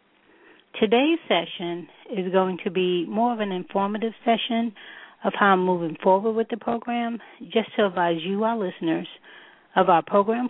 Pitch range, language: 165-200 Hz, English